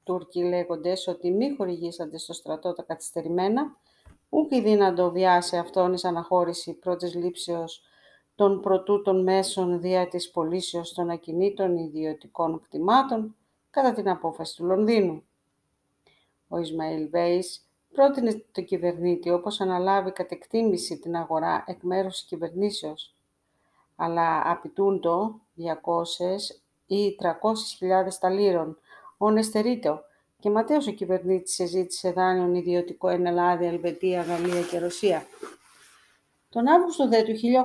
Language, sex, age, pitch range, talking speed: Greek, female, 40-59, 175-220 Hz, 125 wpm